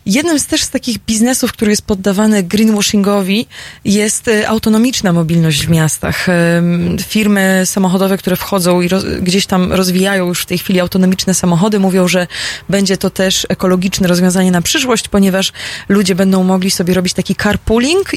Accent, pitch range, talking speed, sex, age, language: native, 185-225 Hz, 150 wpm, female, 20-39, Polish